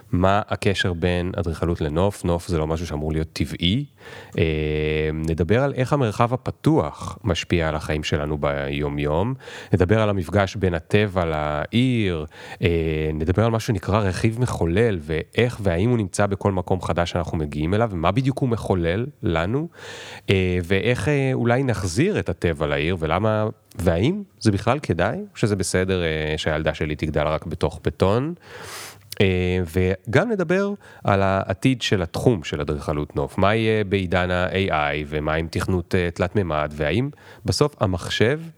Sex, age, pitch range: male, 30-49, 80-110 Hz